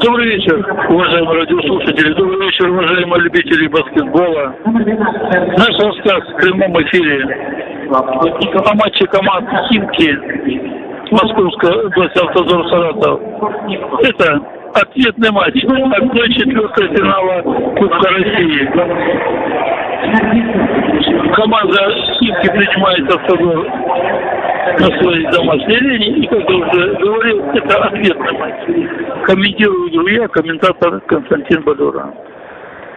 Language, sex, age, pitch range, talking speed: Russian, male, 60-79, 185-235 Hz, 90 wpm